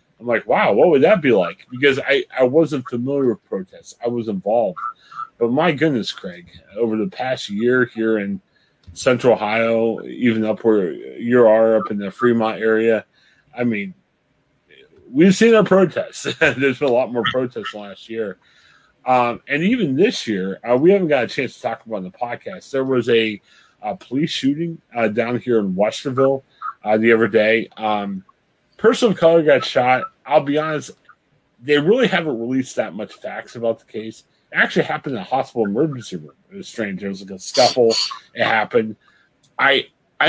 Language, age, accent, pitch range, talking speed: English, 30-49, American, 110-140 Hz, 185 wpm